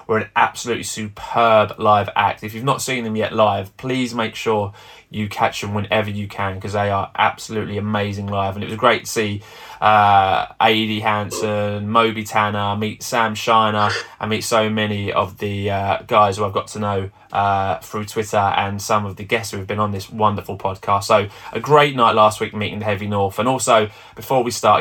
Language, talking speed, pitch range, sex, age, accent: English, 205 wpm, 105-115 Hz, male, 20-39, British